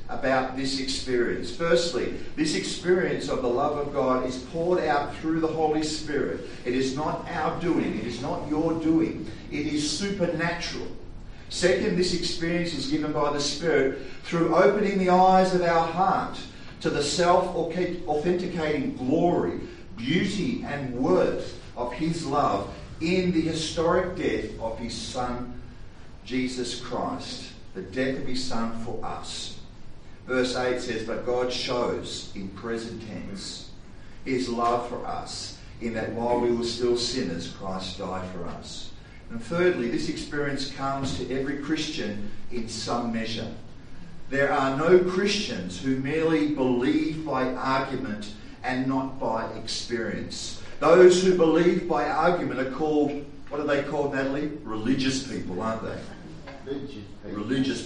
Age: 50-69